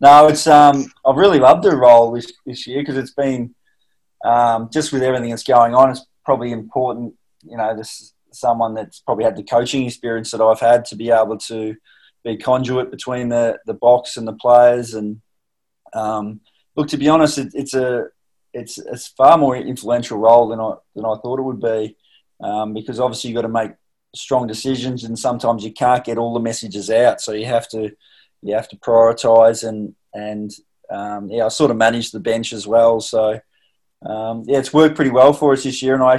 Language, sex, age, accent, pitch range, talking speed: English, male, 20-39, Australian, 110-125 Hz, 205 wpm